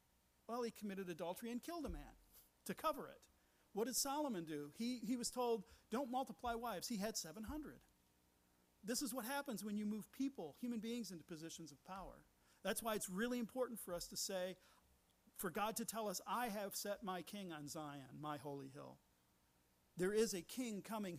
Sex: male